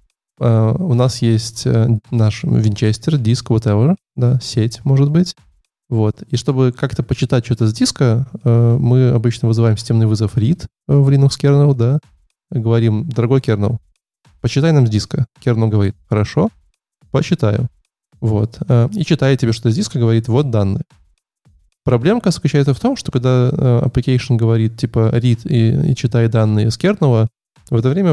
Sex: male